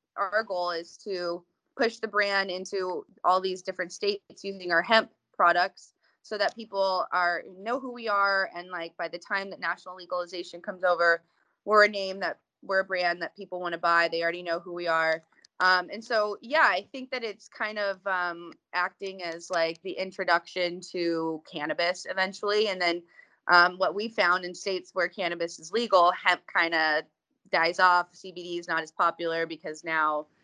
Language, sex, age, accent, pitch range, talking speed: English, female, 20-39, American, 170-200 Hz, 185 wpm